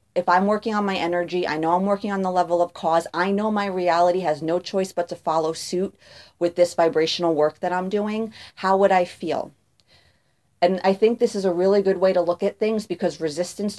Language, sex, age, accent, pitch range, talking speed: English, female, 40-59, American, 150-175 Hz, 225 wpm